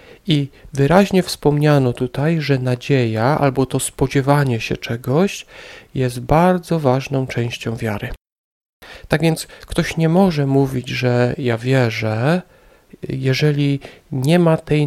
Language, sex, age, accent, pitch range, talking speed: Polish, male, 40-59, native, 125-155 Hz, 115 wpm